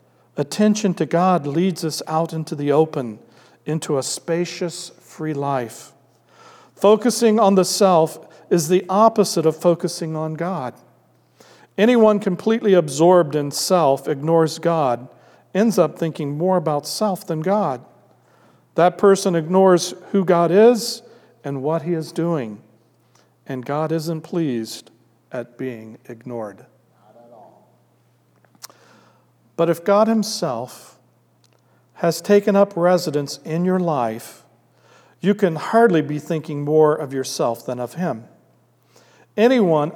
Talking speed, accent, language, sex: 120 wpm, American, English, male